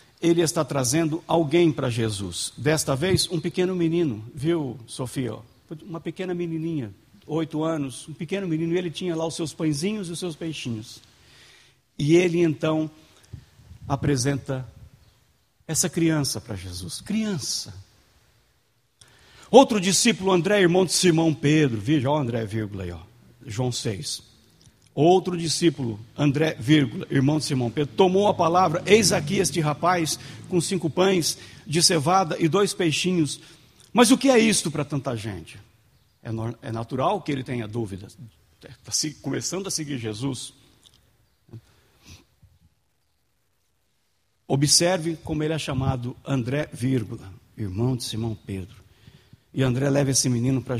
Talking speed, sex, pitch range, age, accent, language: 135 wpm, male, 115-170 Hz, 60-79, Brazilian, Portuguese